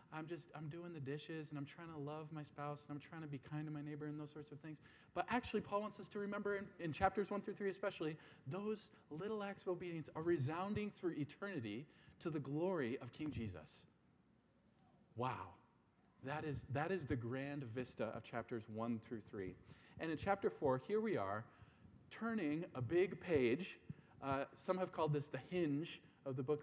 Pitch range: 135-180 Hz